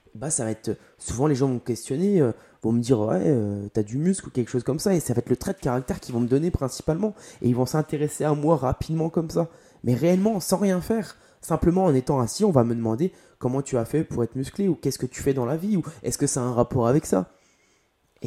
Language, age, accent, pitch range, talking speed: French, 20-39, French, 110-145 Hz, 290 wpm